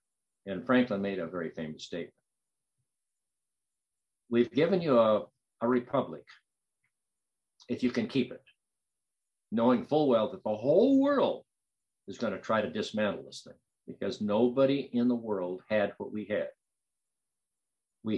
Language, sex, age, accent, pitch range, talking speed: English, male, 60-79, American, 110-145 Hz, 140 wpm